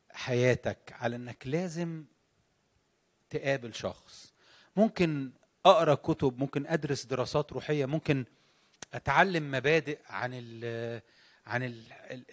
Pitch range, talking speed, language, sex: 135-190 Hz, 95 wpm, English, male